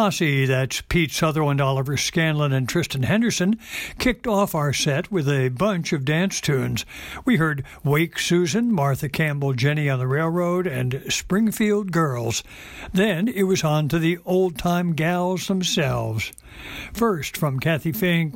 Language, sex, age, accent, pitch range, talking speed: English, male, 60-79, American, 135-180 Hz, 145 wpm